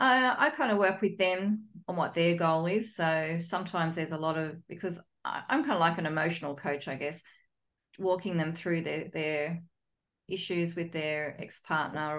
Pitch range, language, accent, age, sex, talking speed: 160-190 Hz, English, Australian, 40-59, female, 180 wpm